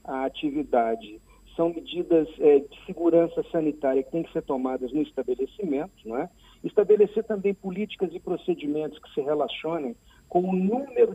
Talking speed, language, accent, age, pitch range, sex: 135 wpm, Portuguese, Brazilian, 50-69, 145-200 Hz, male